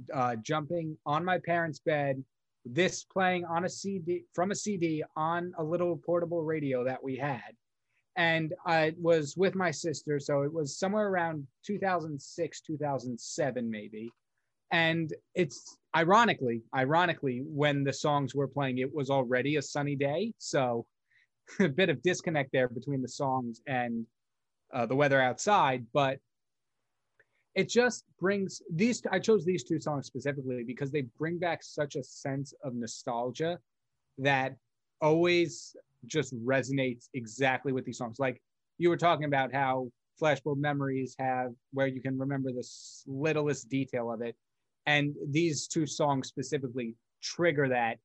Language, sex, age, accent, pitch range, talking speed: English, male, 30-49, American, 130-160 Hz, 145 wpm